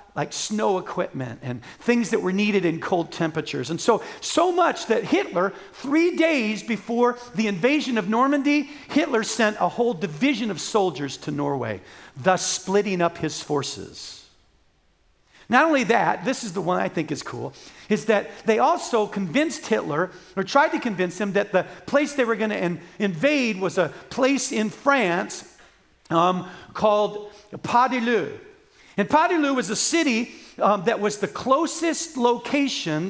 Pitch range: 180-255 Hz